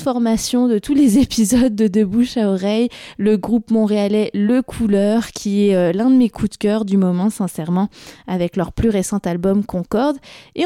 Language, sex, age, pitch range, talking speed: French, female, 20-39, 190-240 Hz, 185 wpm